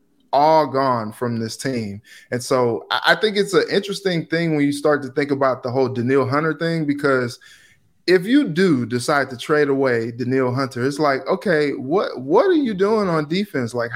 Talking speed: 195 wpm